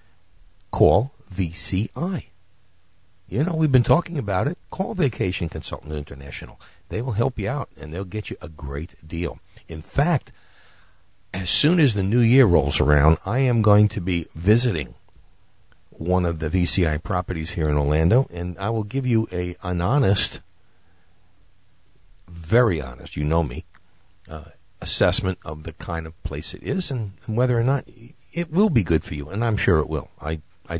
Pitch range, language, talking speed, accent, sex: 85-110 Hz, English, 175 wpm, American, male